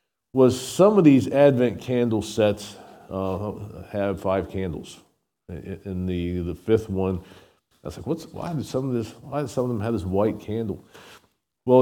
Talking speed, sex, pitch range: 180 wpm, male, 100-125 Hz